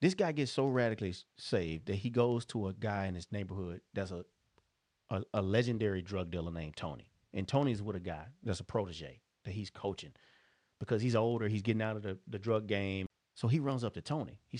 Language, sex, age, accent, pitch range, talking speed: English, male, 30-49, American, 100-140 Hz, 220 wpm